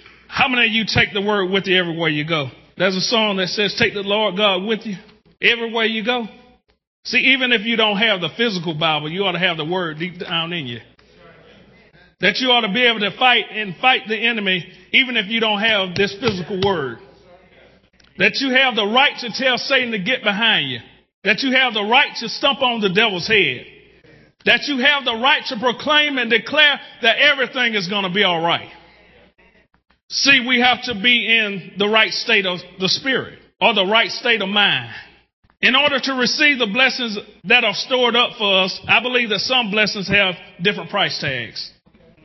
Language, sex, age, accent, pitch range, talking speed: English, male, 40-59, American, 190-245 Hz, 205 wpm